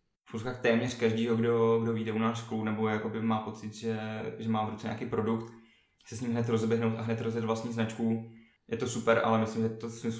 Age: 20-39